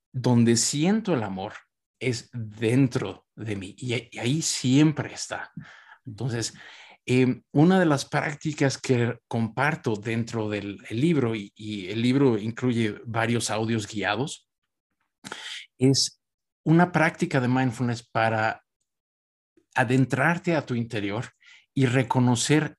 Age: 50-69